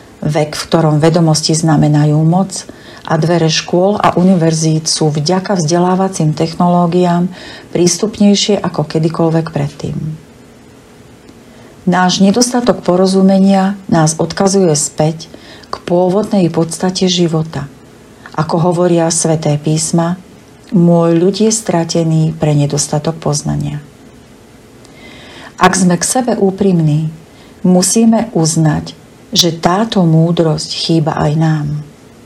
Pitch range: 155-185 Hz